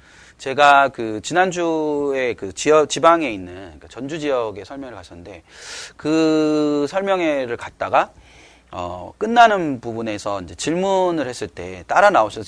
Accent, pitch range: native, 100-155 Hz